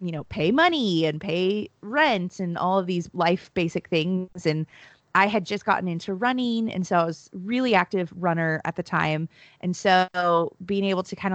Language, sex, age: English, female, 20-39